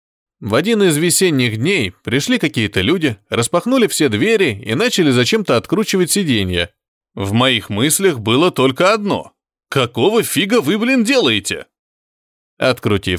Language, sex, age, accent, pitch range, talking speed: Russian, male, 20-39, native, 115-180 Hz, 125 wpm